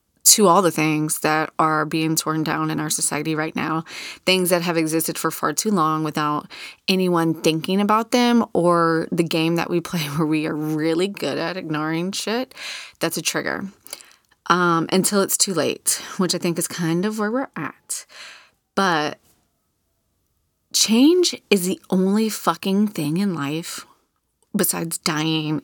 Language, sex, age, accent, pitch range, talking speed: English, female, 30-49, American, 160-220 Hz, 160 wpm